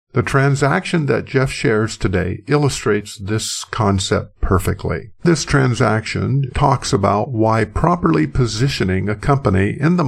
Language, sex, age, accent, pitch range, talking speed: English, male, 50-69, American, 100-140 Hz, 125 wpm